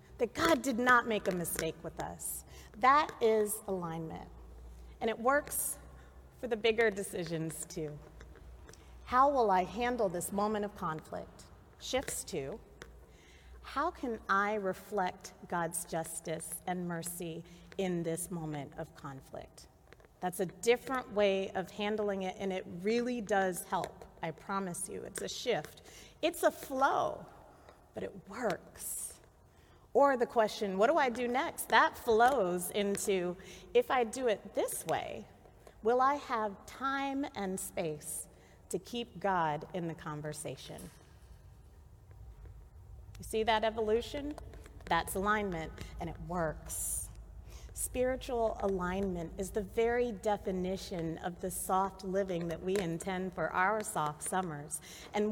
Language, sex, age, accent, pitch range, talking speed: English, female, 40-59, American, 165-225 Hz, 135 wpm